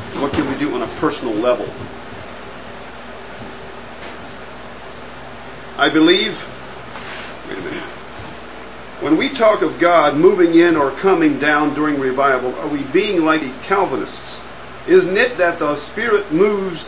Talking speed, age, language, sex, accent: 130 wpm, 50-69, English, male, American